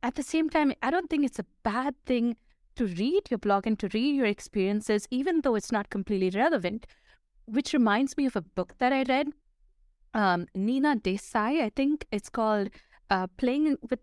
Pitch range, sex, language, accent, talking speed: 200-255 Hz, female, English, Indian, 190 wpm